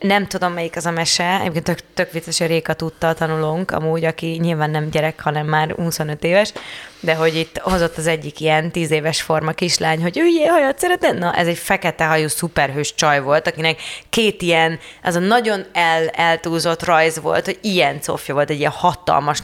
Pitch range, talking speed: 155-180 Hz, 190 wpm